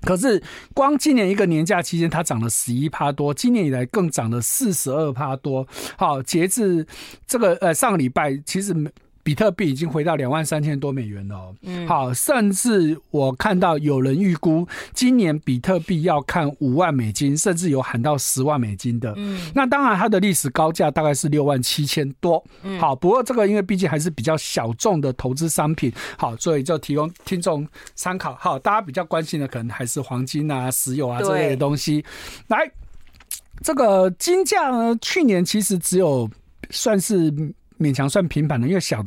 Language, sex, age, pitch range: Chinese, male, 50-69, 140-195 Hz